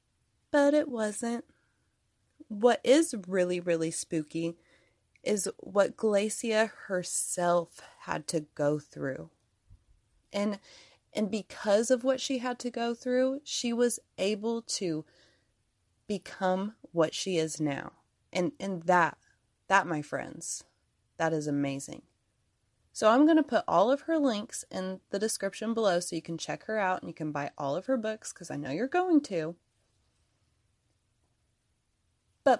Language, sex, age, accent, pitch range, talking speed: English, female, 20-39, American, 165-255 Hz, 145 wpm